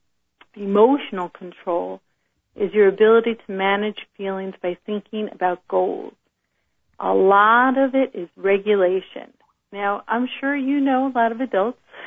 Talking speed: 135 wpm